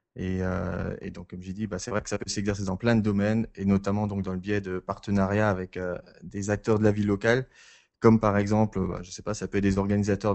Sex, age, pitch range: male, 20-39, 95-110 Hz